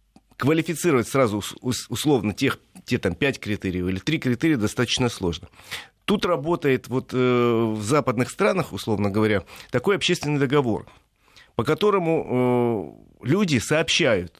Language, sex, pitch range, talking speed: Russian, male, 115-160 Hz, 125 wpm